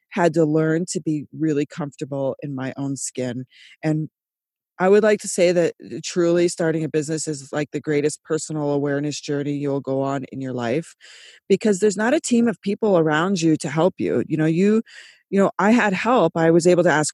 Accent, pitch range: American, 155-220 Hz